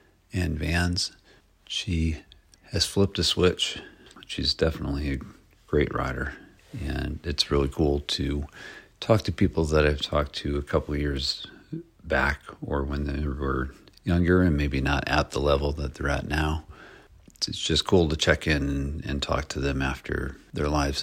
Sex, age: male, 50-69